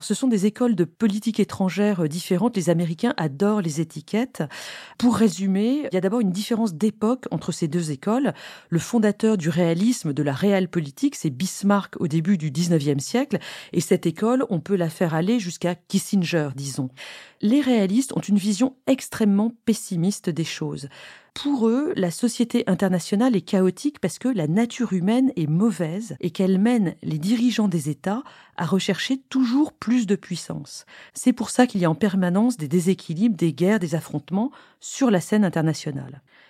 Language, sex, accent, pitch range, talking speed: French, female, French, 170-230 Hz, 175 wpm